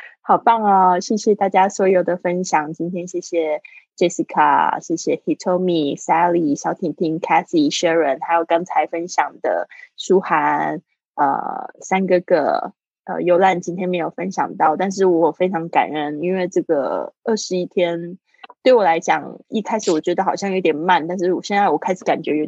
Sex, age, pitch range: female, 20-39, 170-205 Hz